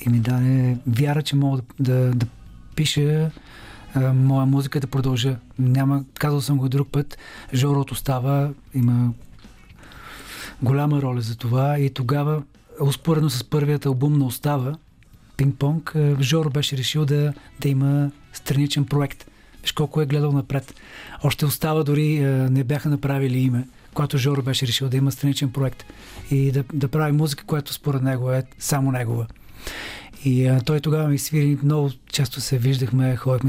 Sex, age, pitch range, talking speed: male, 40-59, 130-145 Hz, 165 wpm